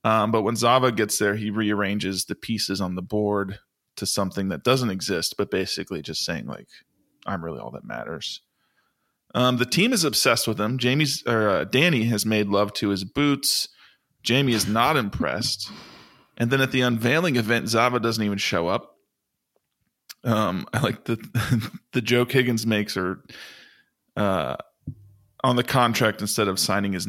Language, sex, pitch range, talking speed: English, male, 100-120 Hz, 170 wpm